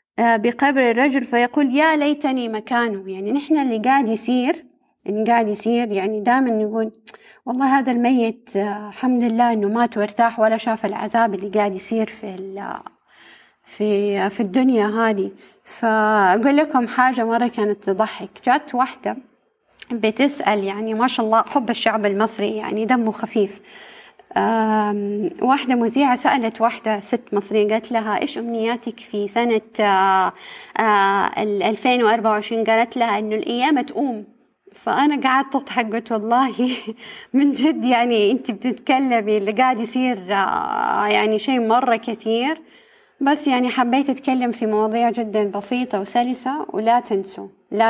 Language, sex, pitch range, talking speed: Arabic, female, 215-255 Hz, 130 wpm